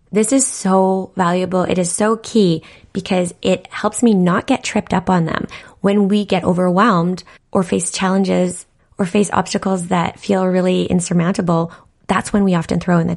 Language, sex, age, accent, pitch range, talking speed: English, female, 20-39, American, 165-190 Hz, 180 wpm